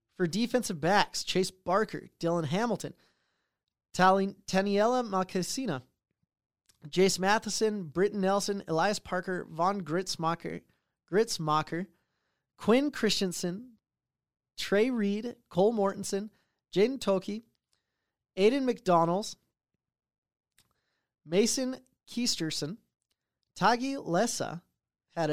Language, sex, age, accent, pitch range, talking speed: English, male, 20-39, American, 170-215 Hz, 80 wpm